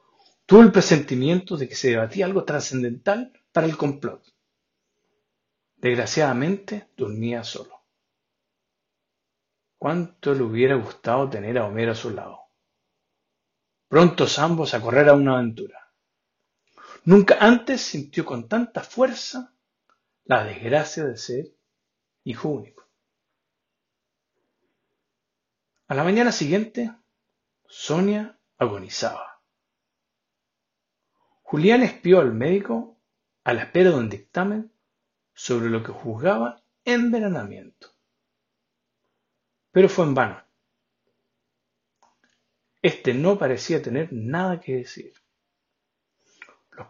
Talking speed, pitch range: 100 wpm, 120-200 Hz